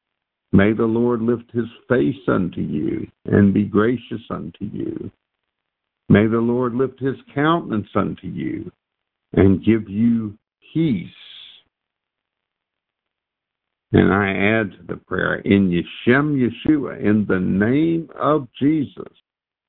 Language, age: English, 60-79